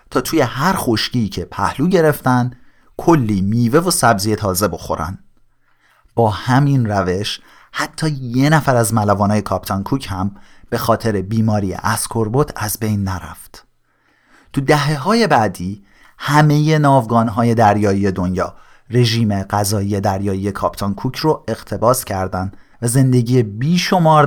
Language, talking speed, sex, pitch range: Persian, 125 wpm, male, 95-130 Hz